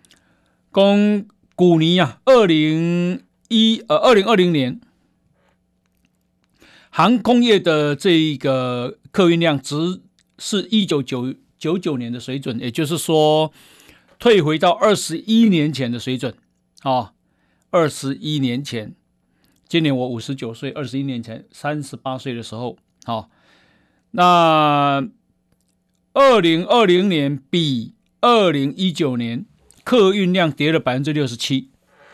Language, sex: Chinese, male